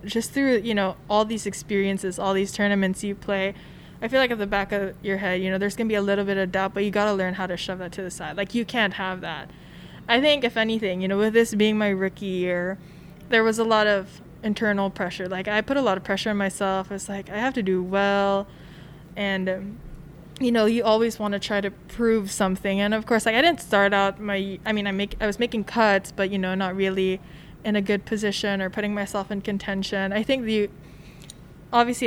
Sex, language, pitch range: female, English, 190-215 Hz